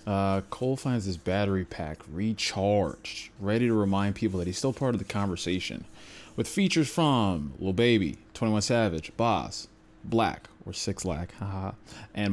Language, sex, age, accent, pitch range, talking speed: English, male, 20-39, American, 95-115 Hz, 155 wpm